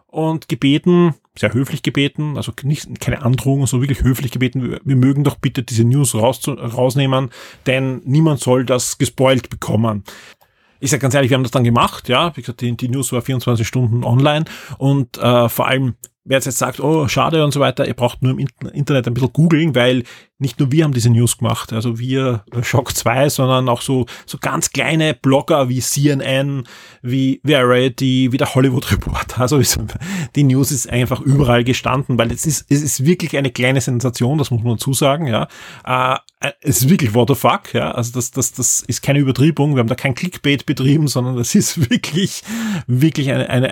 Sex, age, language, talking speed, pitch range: male, 30-49, German, 200 wpm, 125-145 Hz